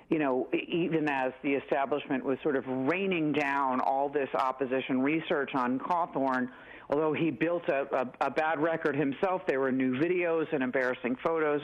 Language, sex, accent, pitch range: English, female, American, 135-175 Hz